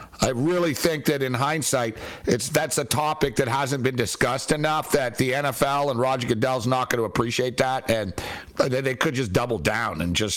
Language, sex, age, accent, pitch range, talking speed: English, male, 60-79, American, 120-155 Hz, 195 wpm